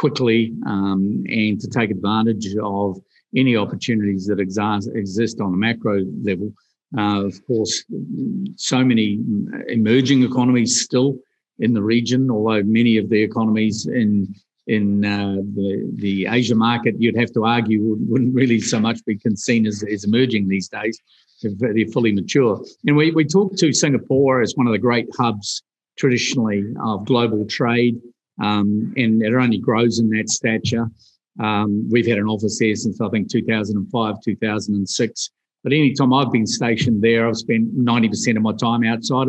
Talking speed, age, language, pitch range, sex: 165 wpm, 50-69, English, 110-130 Hz, male